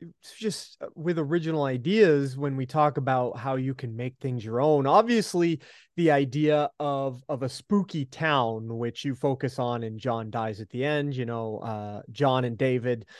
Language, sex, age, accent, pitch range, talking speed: English, male, 30-49, American, 125-165 Hz, 180 wpm